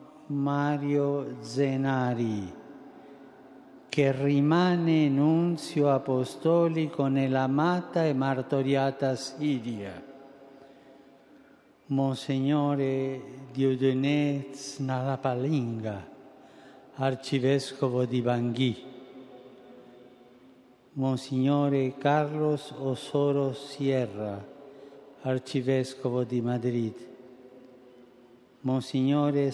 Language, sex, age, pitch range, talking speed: Italian, male, 60-79, 125-140 Hz, 50 wpm